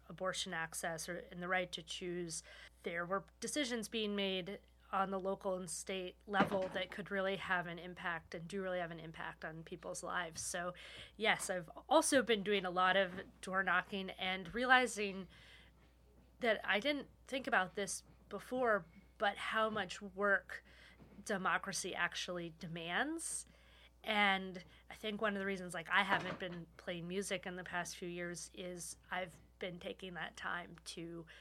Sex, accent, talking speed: female, American, 165 wpm